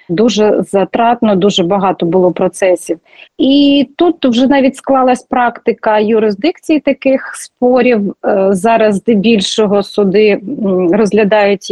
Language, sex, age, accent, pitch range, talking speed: Ukrainian, female, 30-49, native, 205-255 Hz, 95 wpm